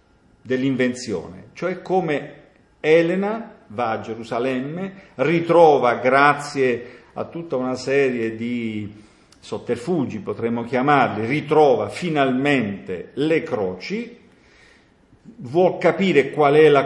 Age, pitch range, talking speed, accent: 50-69, 120-155 Hz, 95 wpm, native